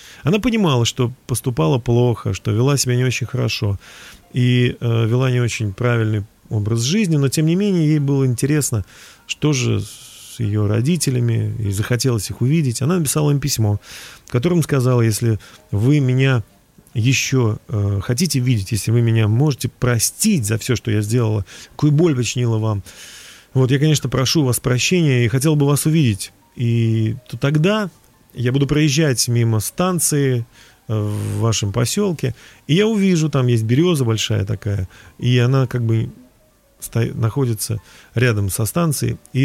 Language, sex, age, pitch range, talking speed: Russian, male, 40-59, 110-145 Hz, 155 wpm